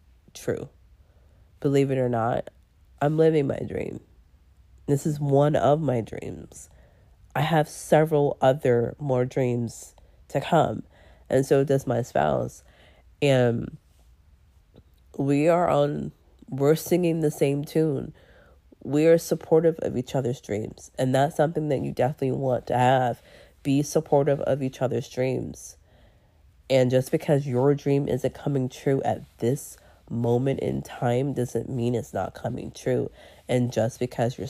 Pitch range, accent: 115-150 Hz, American